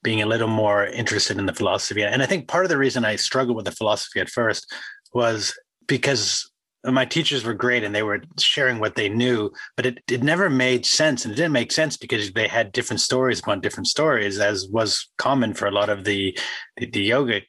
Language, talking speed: English, 225 wpm